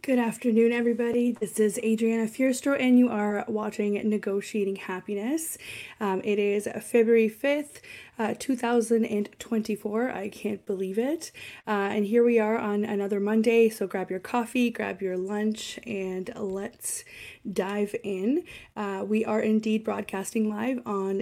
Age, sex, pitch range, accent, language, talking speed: 20-39, female, 200-235 Hz, American, English, 140 wpm